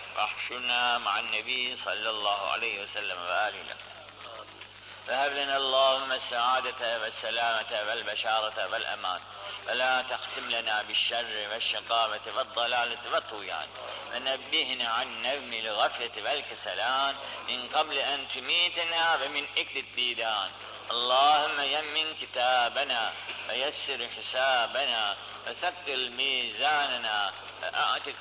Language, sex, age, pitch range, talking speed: Turkish, male, 50-69, 115-140 Hz, 90 wpm